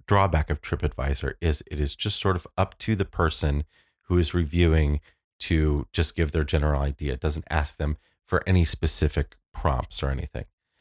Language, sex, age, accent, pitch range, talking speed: English, male, 30-49, American, 75-90 Hz, 180 wpm